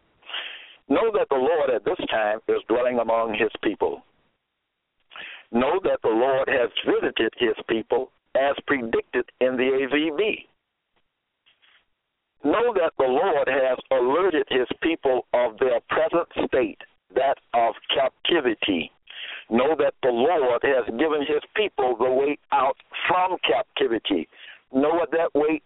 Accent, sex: American, male